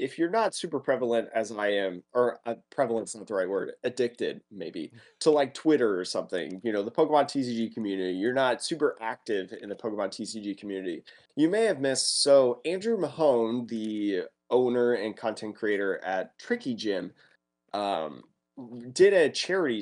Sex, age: male, 20-39